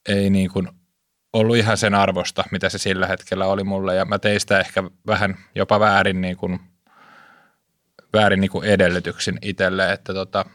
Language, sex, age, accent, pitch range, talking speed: Finnish, male, 20-39, native, 95-110 Hz, 150 wpm